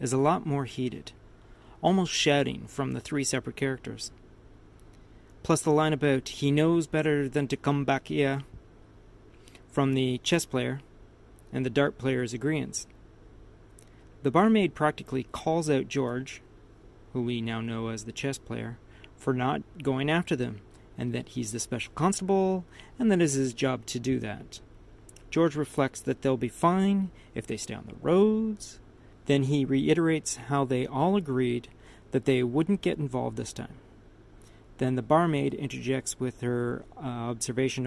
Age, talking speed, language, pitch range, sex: 40-59, 160 wpm, English, 120-155 Hz, male